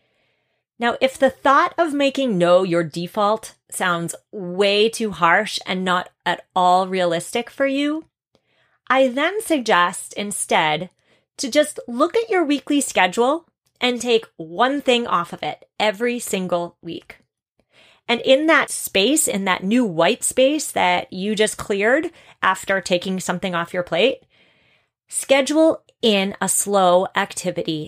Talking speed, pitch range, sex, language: 140 wpm, 175-240 Hz, female, English